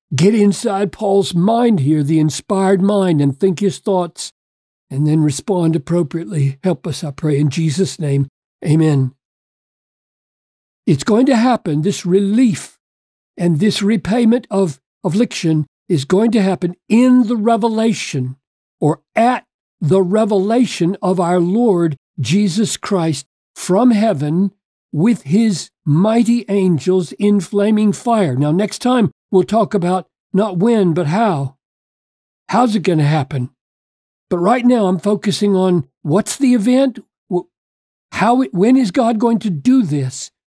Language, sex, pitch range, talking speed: English, male, 165-220 Hz, 140 wpm